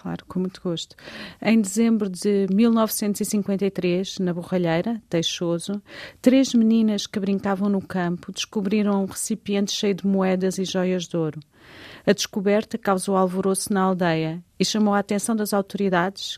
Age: 40-59